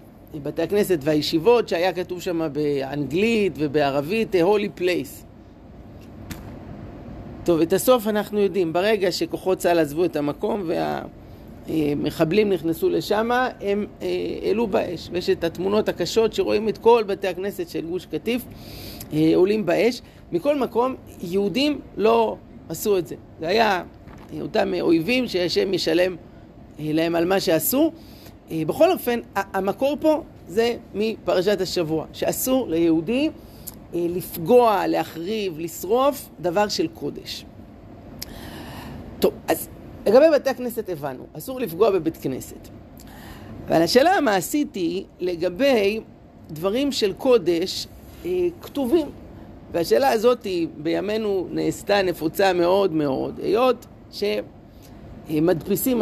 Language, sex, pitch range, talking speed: Hebrew, male, 165-225 Hz, 105 wpm